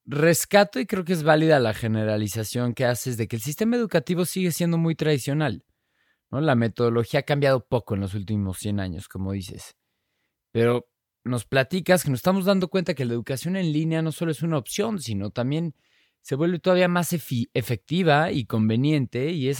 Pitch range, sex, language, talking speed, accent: 110-150 Hz, male, Spanish, 185 wpm, Mexican